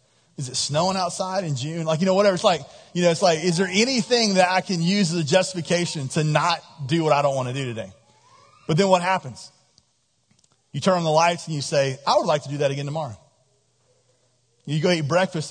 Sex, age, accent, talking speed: male, 30-49, American, 230 wpm